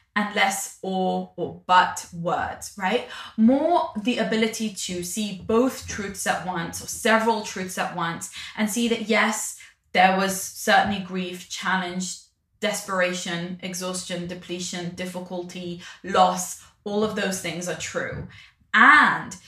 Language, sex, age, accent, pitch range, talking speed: English, female, 20-39, British, 185-225 Hz, 130 wpm